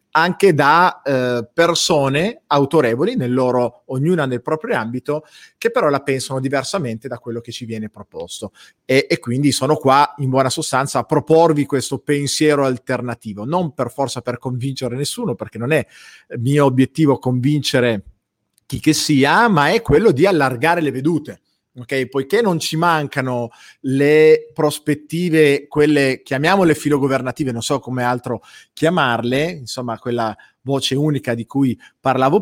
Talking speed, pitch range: 145 wpm, 125-150 Hz